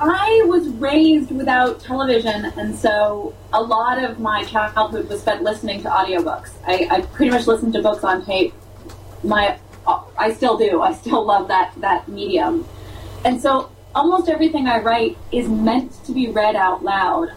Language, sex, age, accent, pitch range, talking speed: English, female, 30-49, American, 195-270 Hz, 170 wpm